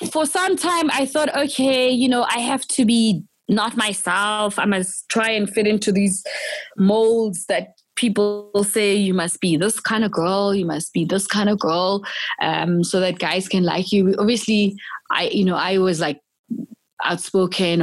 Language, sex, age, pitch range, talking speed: English, female, 20-39, 175-210 Hz, 185 wpm